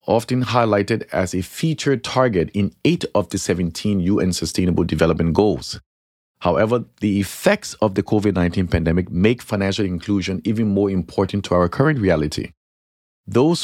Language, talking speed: English, 145 wpm